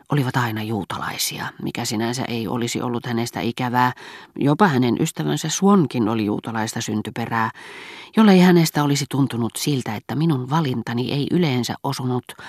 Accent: native